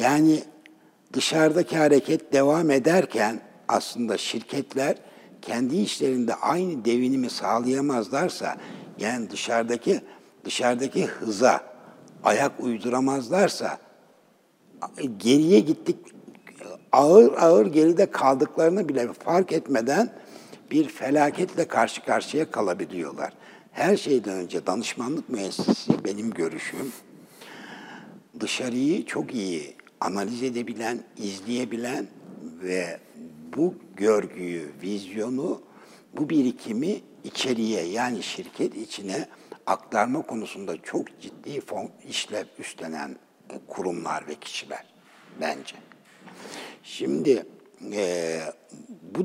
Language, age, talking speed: Turkish, 60-79, 85 wpm